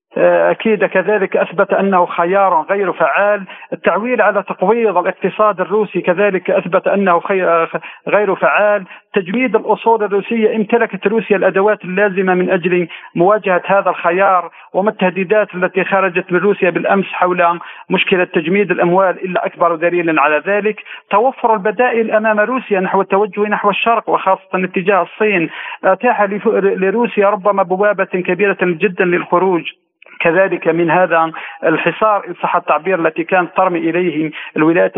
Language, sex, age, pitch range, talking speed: Arabic, male, 50-69, 180-205 Hz, 125 wpm